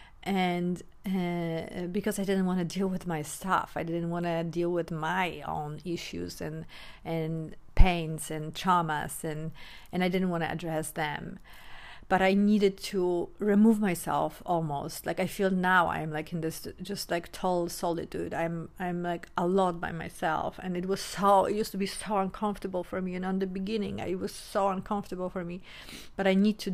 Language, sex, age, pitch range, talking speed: English, female, 50-69, 165-195 Hz, 190 wpm